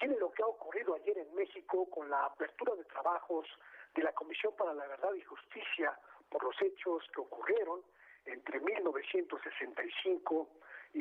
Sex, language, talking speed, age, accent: male, Spanish, 160 wpm, 50-69, Mexican